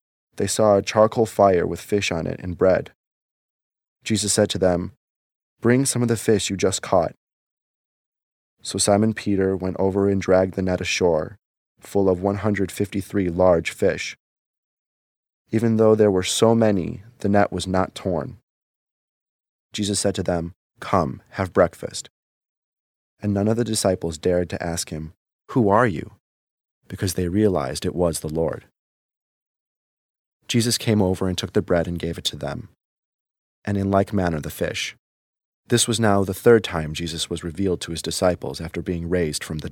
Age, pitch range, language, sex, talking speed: 30-49, 90-105 Hz, English, male, 165 wpm